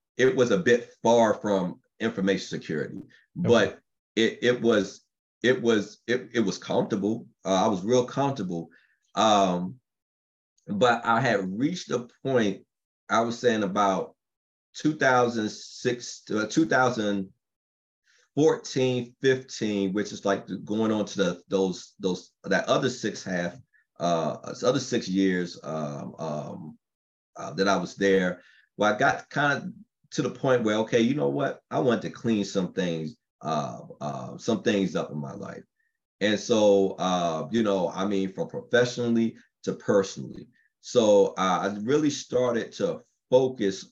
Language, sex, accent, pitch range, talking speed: English, male, American, 95-125 Hz, 145 wpm